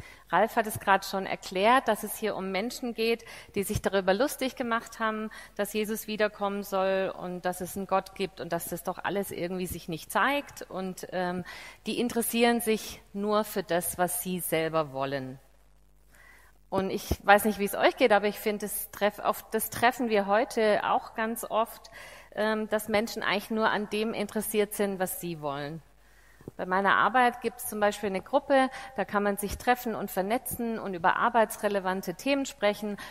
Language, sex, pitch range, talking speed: German, female, 190-230 Hz, 185 wpm